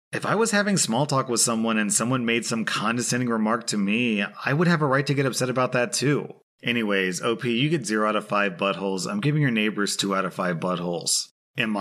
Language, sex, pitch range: English, male, 100-125 Hz